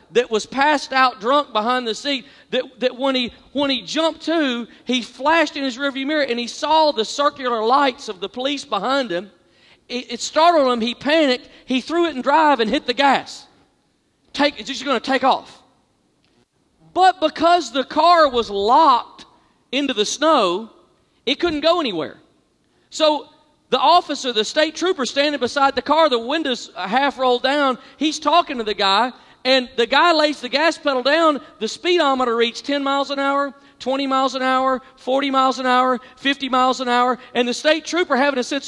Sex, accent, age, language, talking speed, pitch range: male, American, 40-59, English, 190 wpm, 250-325 Hz